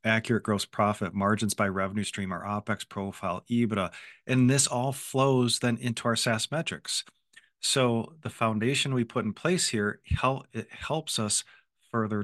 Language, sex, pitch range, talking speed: English, male, 105-130 Hz, 155 wpm